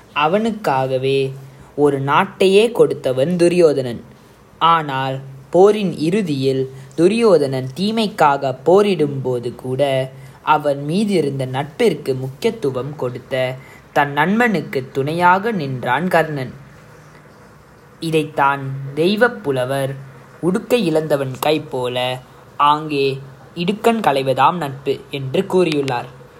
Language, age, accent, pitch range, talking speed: Tamil, 20-39, native, 130-165 Hz, 80 wpm